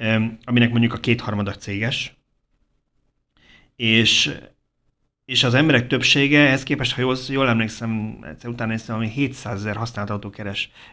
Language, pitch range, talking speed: Hungarian, 100-125 Hz, 130 wpm